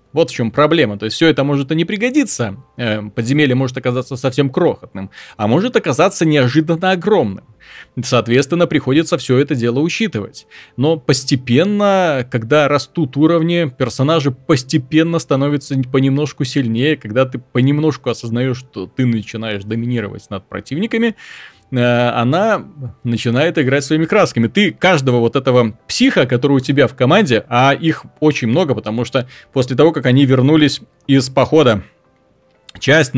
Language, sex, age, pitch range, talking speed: Russian, male, 30-49, 120-150 Hz, 140 wpm